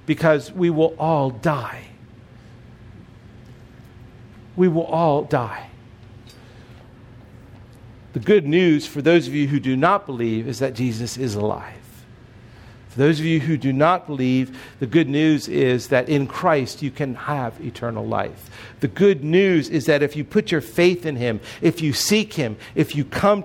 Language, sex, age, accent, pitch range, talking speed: English, male, 50-69, American, 120-160 Hz, 165 wpm